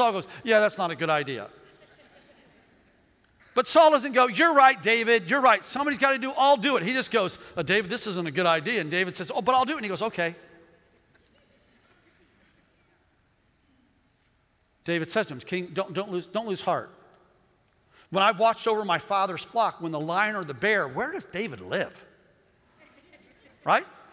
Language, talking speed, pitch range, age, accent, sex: English, 180 wpm, 170-225 Hz, 50-69, American, male